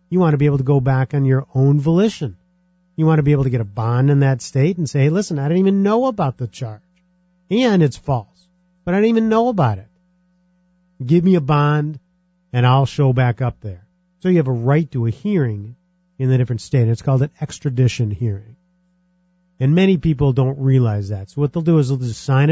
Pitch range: 120-180 Hz